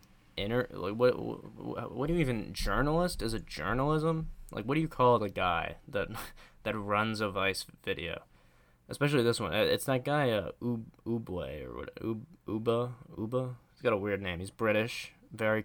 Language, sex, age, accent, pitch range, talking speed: English, male, 20-39, American, 95-115 Hz, 175 wpm